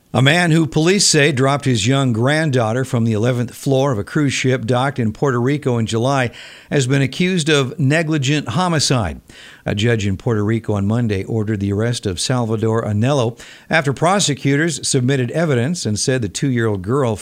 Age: 50-69